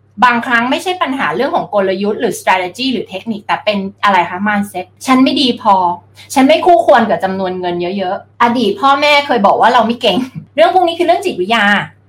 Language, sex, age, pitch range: Thai, female, 20-39, 200-280 Hz